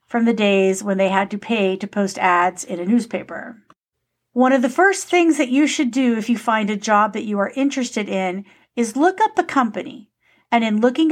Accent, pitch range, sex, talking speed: American, 195-250 Hz, female, 220 wpm